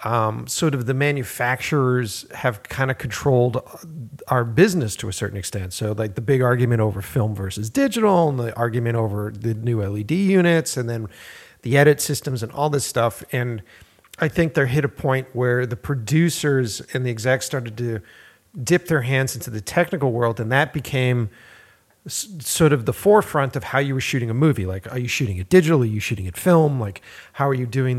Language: English